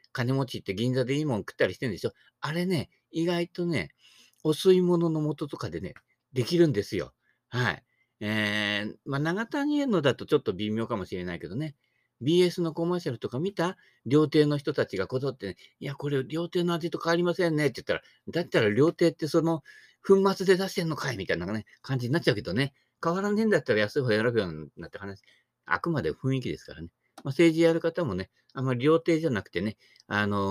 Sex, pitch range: male, 110-170 Hz